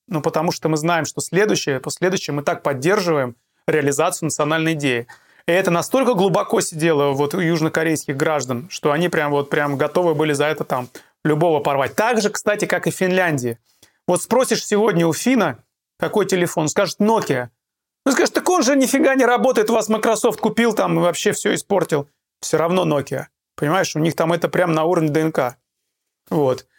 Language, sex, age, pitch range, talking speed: Russian, male, 30-49, 150-190 Hz, 180 wpm